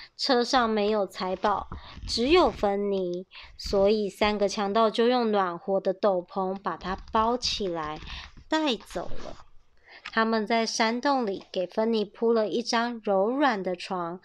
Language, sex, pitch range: Chinese, male, 200-270 Hz